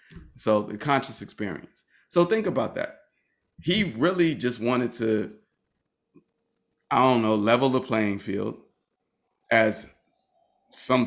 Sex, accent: male, American